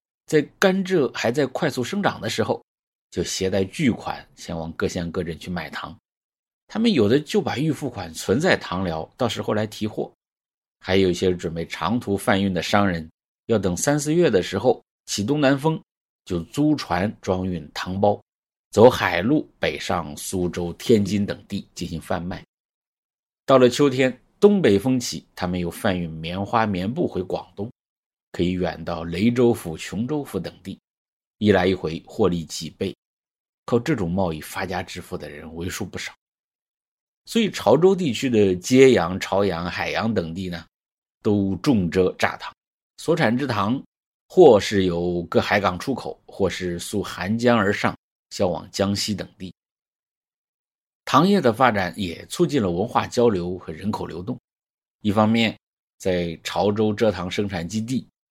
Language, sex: English, male